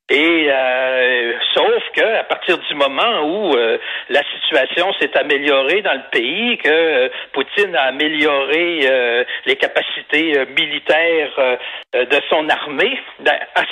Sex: male